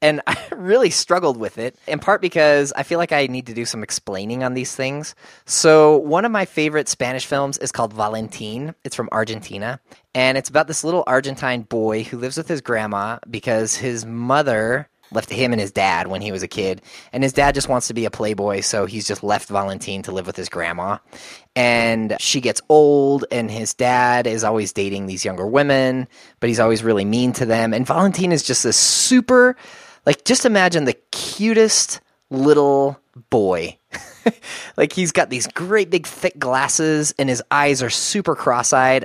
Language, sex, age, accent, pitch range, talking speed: English, male, 20-39, American, 110-145 Hz, 190 wpm